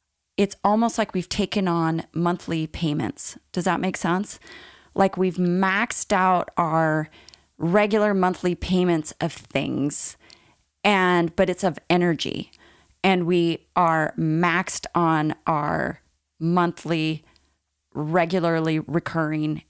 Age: 30-49